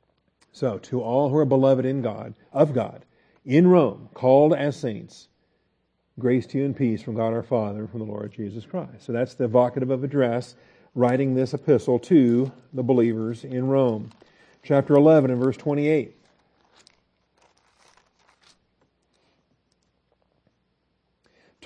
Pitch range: 125-145 Hz